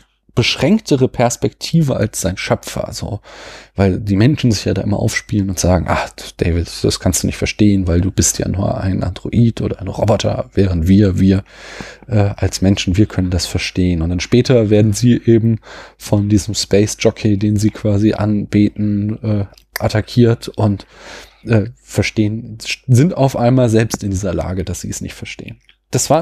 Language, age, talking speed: German, 20-39, 175 wpm